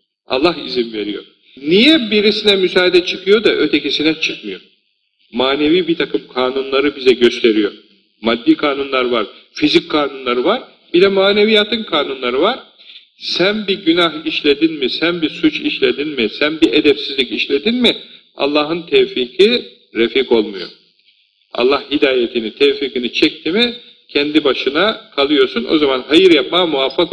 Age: 50-69